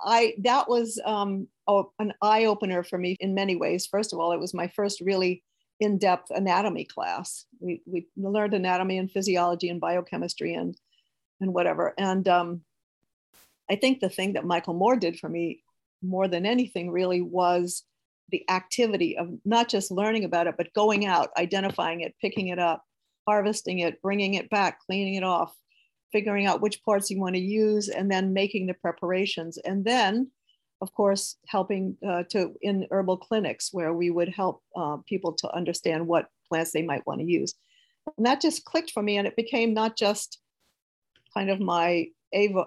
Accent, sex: American, female